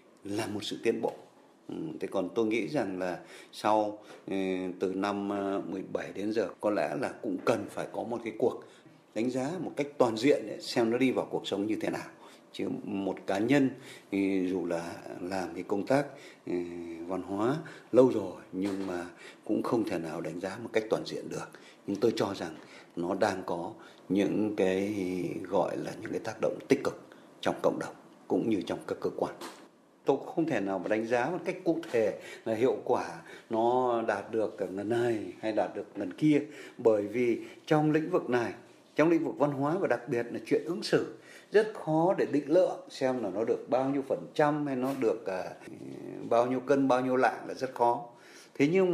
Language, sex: Vietnamese, male